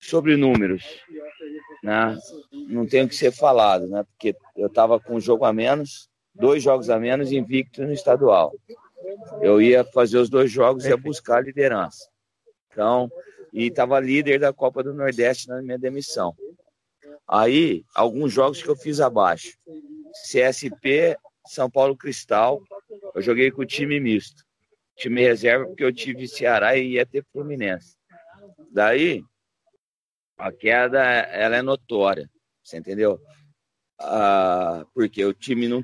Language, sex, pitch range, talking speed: Portuguese, male, 120-150 Hz, 145 wpm